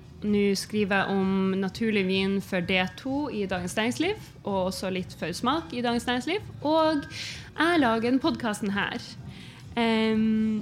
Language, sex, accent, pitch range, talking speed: English, female, Swedish, 190-235 Hz, 135 wpm